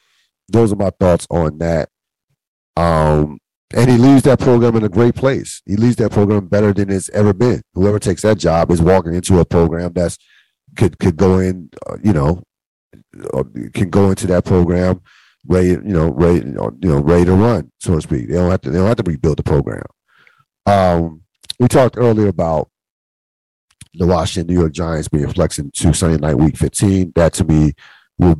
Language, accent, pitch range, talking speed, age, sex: English, American, 75-100 Hz, 195 wpm, 50-69, male